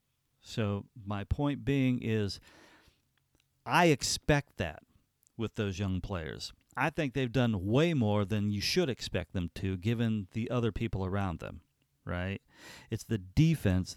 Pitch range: 100-130 Hz